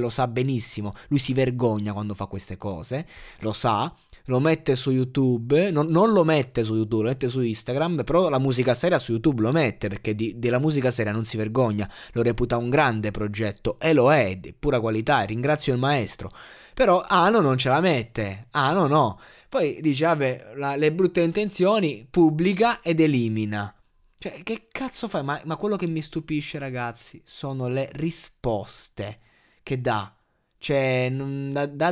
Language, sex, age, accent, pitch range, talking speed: Italian, male, 20-39, native, 120-160 Hz, 180 wpm